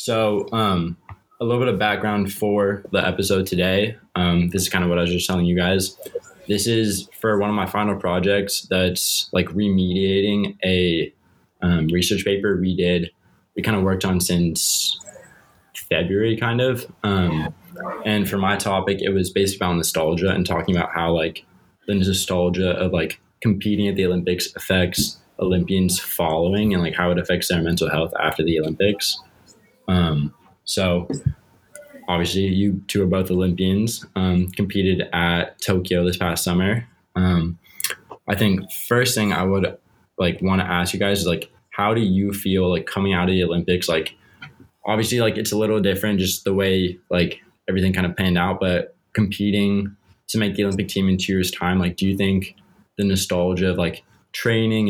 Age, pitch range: 20-39, 90-100 Hz